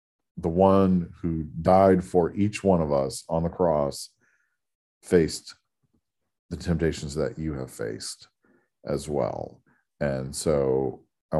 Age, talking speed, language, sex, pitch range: 40-59, 125 wpm, English, male, 80-95 Hz